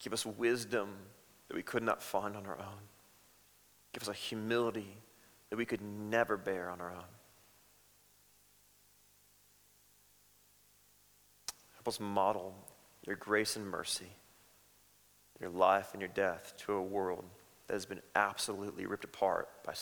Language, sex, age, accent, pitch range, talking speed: English, male, 30-49, American, 100-115 Hz, 135 wpm